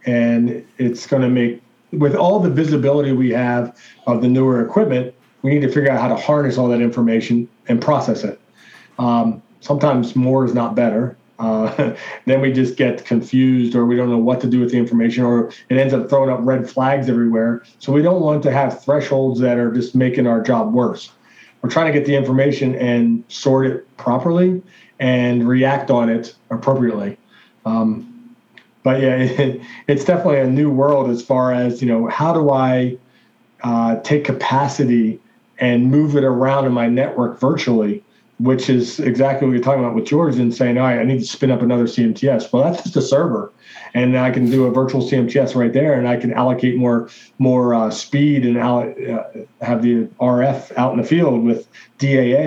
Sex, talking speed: male, 195 wpm